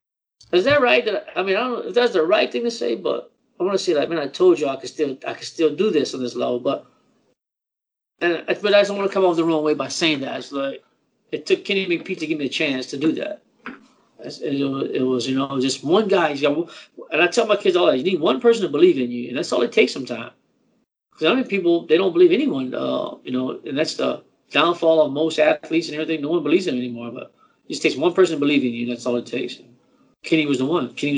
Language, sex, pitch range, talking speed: English, male, 130-175 Hz, 270 wpm